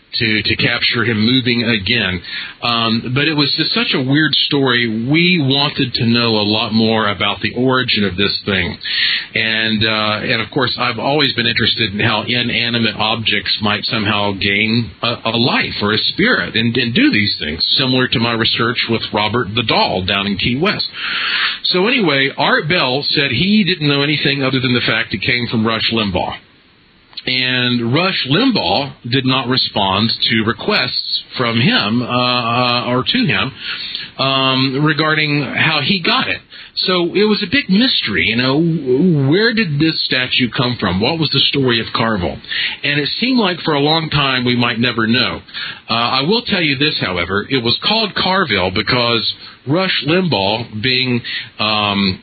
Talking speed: 175 wpm